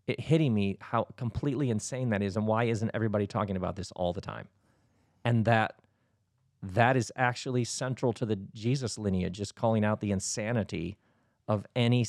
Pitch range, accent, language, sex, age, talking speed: 100-125 Hz, American, English, male, 40-59, 175 wpm